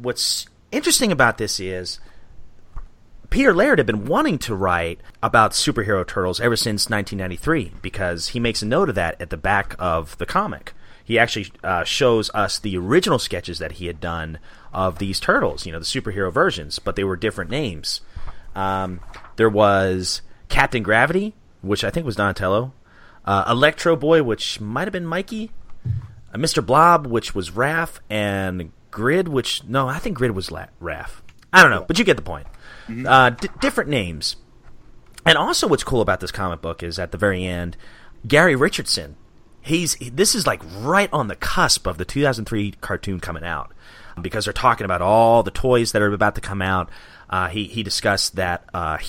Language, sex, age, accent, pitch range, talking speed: English, male, 30-49, American, 90-125 Hz, 185 wpm